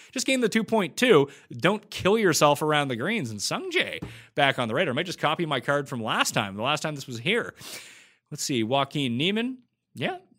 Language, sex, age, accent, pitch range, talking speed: English, male, 30-49, American, 120-170 Hz, 200 wpm